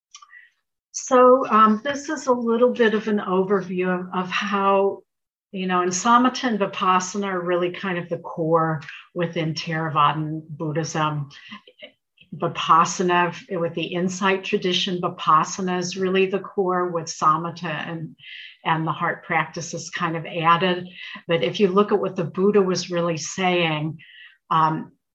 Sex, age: female, 60-79